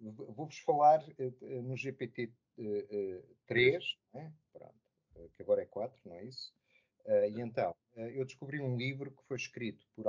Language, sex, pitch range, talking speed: Portuguese, male, 110-140 Hz, 165 wpm